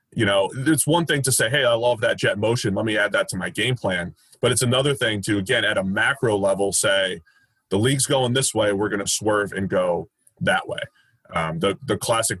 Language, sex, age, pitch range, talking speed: English, male, 30-49, 95-120 Hz, 235 wpm